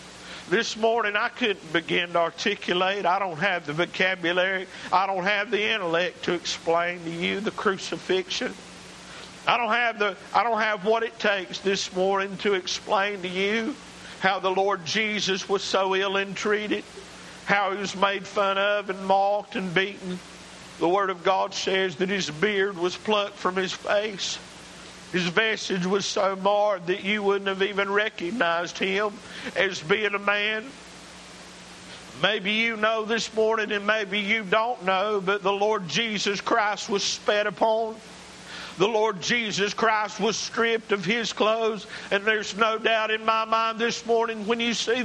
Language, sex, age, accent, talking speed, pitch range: English, male, 50-69, American, 165 wpm, 190-225 Hz